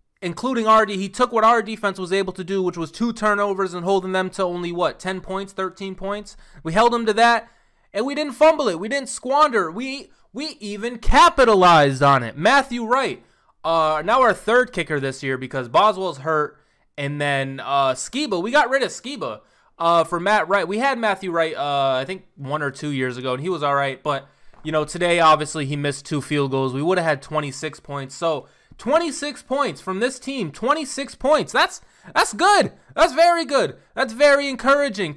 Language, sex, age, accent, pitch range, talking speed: English, male, 20-39, American, 165-235 Hz, 205 wpm